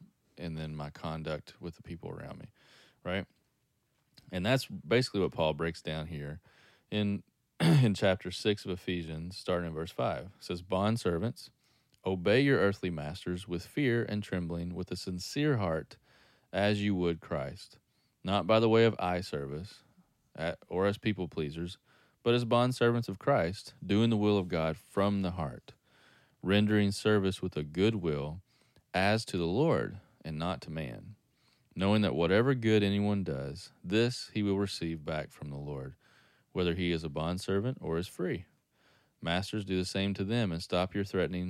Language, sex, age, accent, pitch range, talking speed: English, male, 30-49, American, 80-105 Hz, 175 wpm